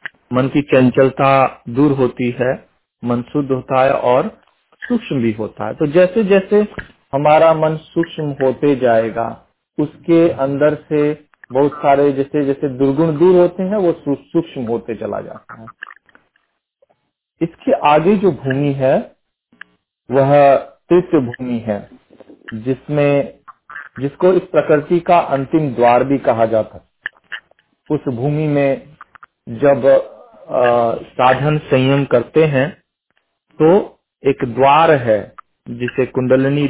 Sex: male